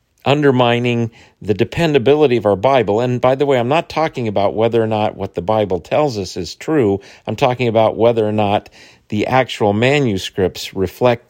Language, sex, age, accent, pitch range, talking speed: English, male, 50-69, American, 100-140 Hz, 180 wpm